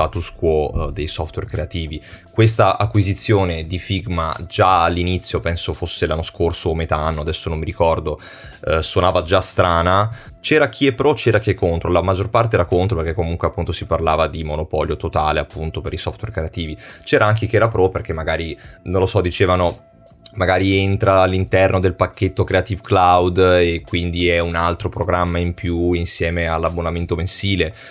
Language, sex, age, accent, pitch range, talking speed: Italian, male, 20-39, native, 85-100 Hz, 175 wpm